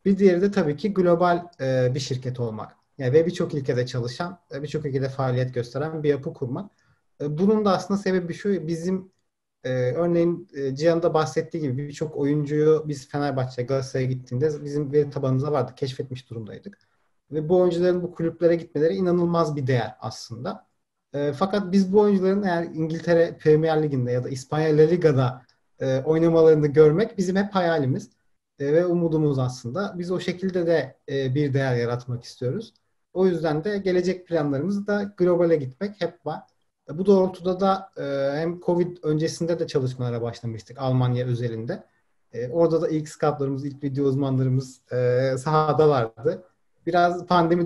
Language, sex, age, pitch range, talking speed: Turkish, male, 40-59, 135-175 Hz, 150 wpm